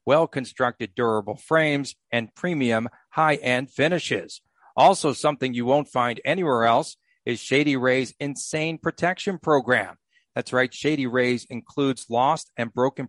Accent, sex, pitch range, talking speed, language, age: American, male, 125-155 Hz, 130 wpm, English, 50-69